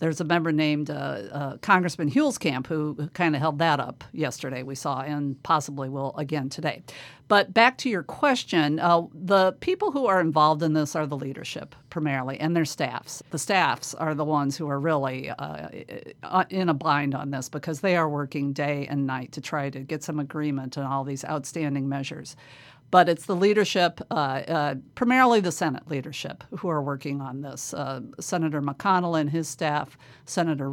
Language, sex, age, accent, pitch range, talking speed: English, female, 50-69, American, 140-170 Hz, 185 wpm